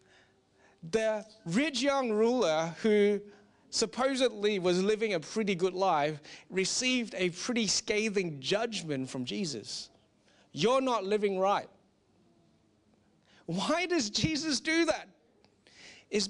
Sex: male